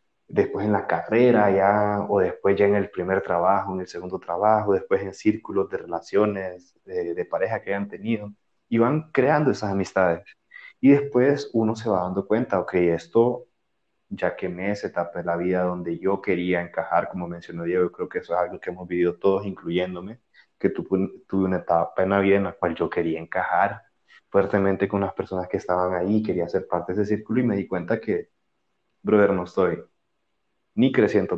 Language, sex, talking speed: Spanish, male, 200 wpm